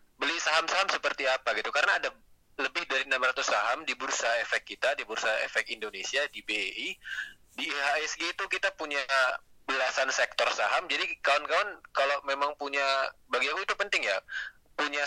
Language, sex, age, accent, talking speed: Indonesian, male, 20-39, native, 160 wpm